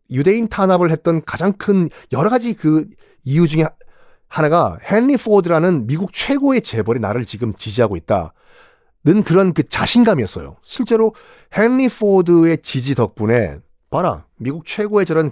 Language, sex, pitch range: Korean, male, 130-195 Hz